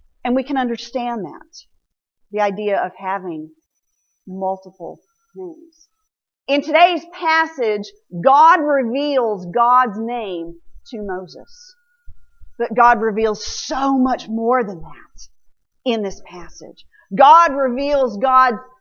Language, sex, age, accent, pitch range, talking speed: English, female, 40-59, American, 225-320 Hz, 110 wpm